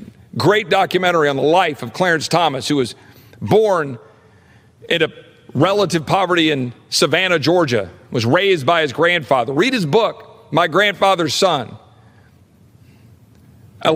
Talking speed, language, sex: 130 wpm, English, male